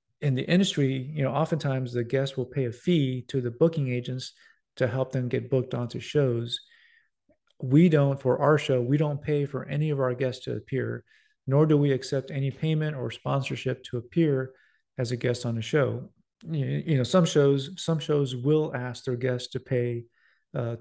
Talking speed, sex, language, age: 195 wpm, male, English, 40-59